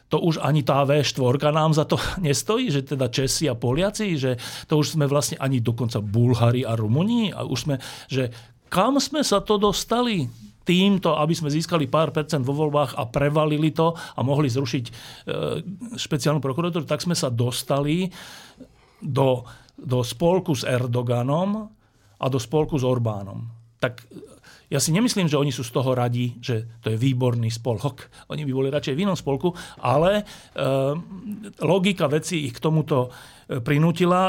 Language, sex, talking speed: Slovak, male, 165 wpm